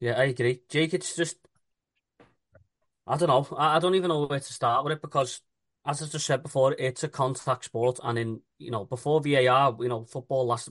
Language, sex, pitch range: English, male, 120-145 Hz